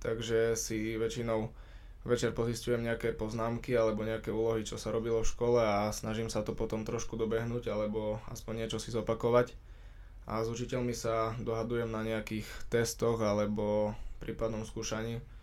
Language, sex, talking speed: Slovak, male, 150 wpm